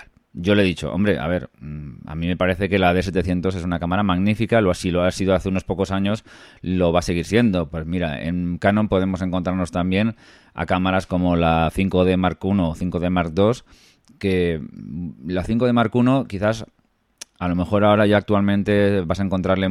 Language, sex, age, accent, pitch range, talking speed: Spanish, male, 20-39, Spanish, 85-100 Hz, 200 wpm